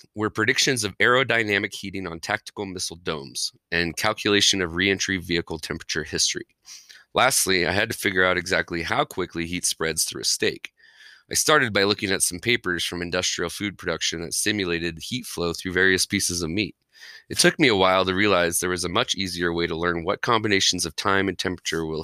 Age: 30-49